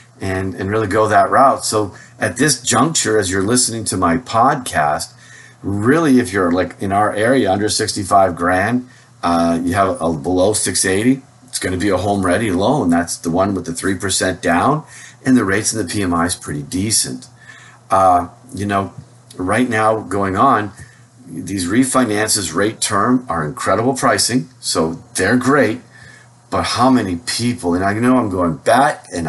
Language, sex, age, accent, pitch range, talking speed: English, male, 40-59, American, 95-125 Hz, 170 wpm